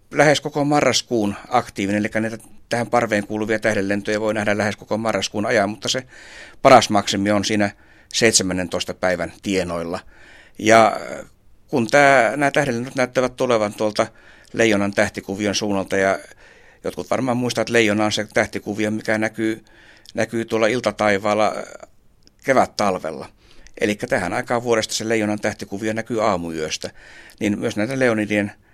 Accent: native